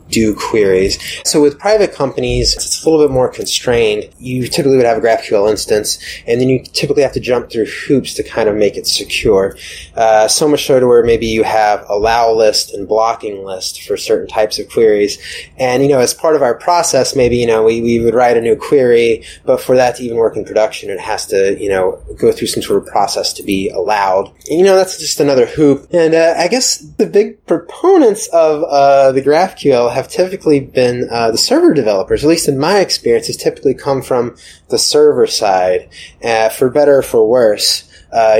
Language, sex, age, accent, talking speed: English, male, 20-39, American, 215 wpm